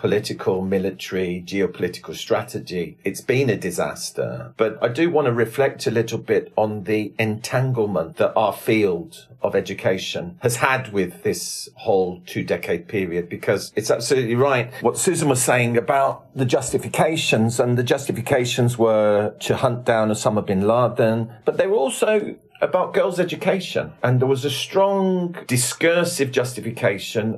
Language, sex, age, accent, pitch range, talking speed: English, male, 50-69, British, 115-165 Hz, 145 wpm